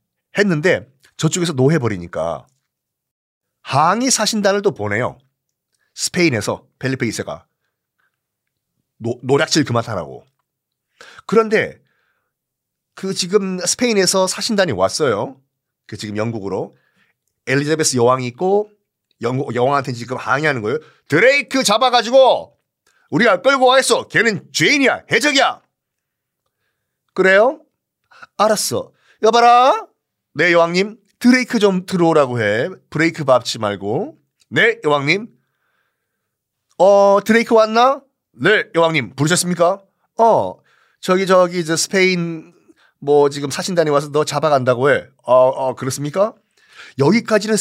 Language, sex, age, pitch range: Korean, male, 40-59, 130-210 Hz